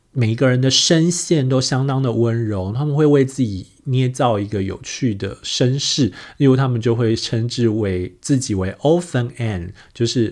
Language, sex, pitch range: Chinese, male, 115-170 Hz